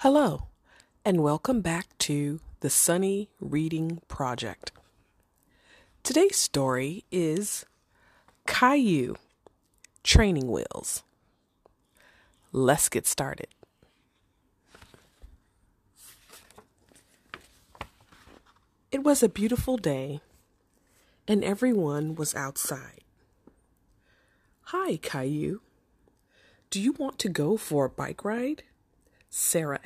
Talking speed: 80 wpm